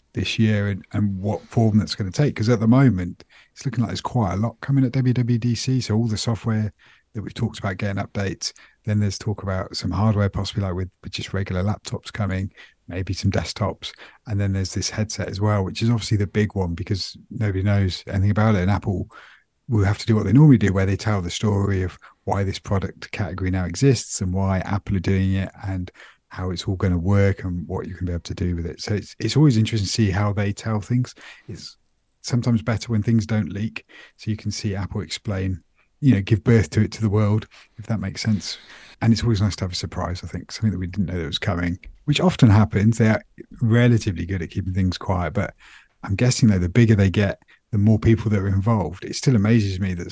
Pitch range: 95-110 Hz